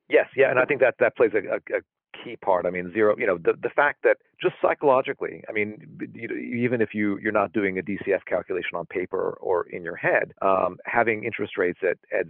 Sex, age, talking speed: male, 40-59, 230 wpm